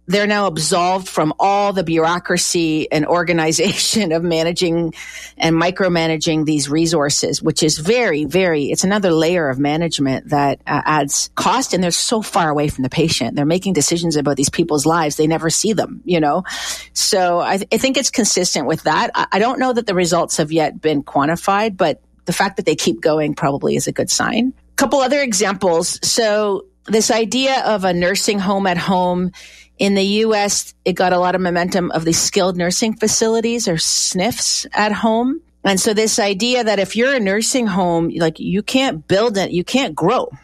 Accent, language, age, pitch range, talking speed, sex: American, English, 40-59, 160-210 Hz, 190 wpm, female